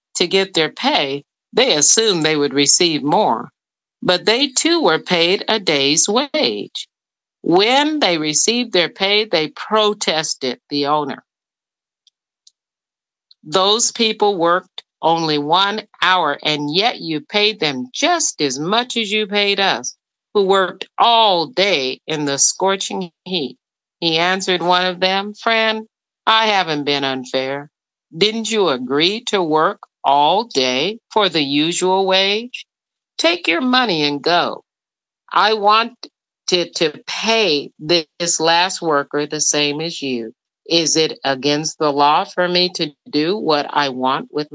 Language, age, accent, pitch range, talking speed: English, 50-69, American, 150-210 Hz, 140 wpm